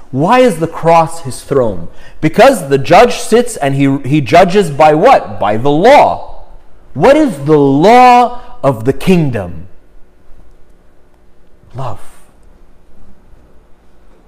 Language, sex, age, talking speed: English, male, 30-49, 115 wpm